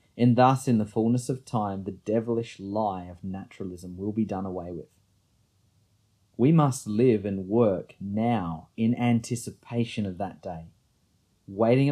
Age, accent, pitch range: 30-49, Australian, 95-120 Hz